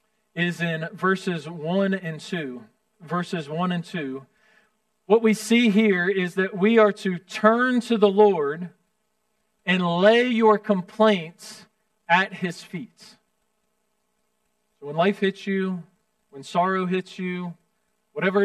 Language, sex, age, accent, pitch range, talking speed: English, male, 40-59, American, 185-215 Hz, 130 wpm